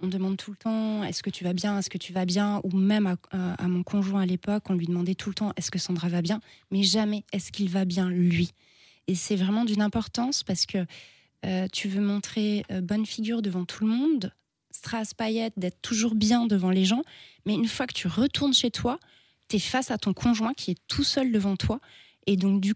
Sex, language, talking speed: female, French, 240 wpm